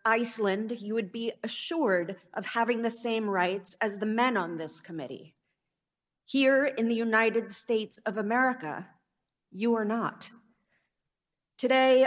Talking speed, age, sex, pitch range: 135 wpm, 40-59, female, 200-240 Hz